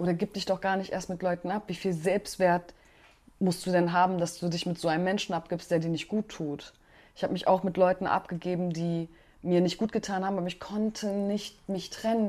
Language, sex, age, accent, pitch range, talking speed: German, female, 20-39, German, 155-190 Hz, 240 wpm